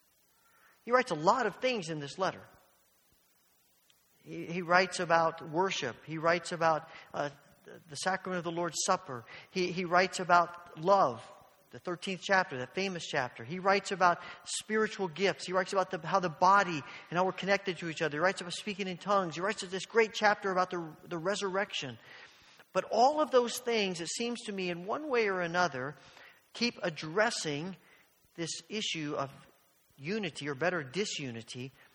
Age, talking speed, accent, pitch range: 40-59, 175 wpm, American, 150-195 Hz